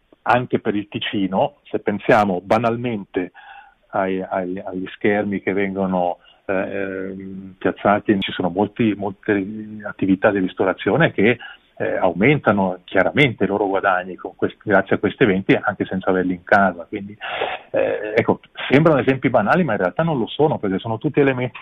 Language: Italian